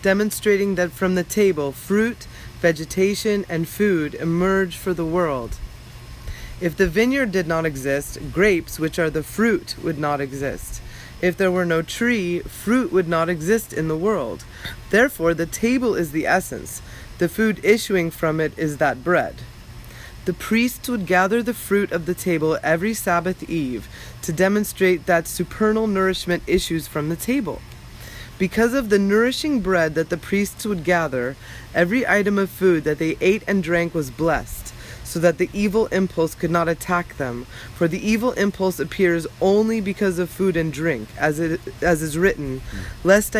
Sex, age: female, 30-49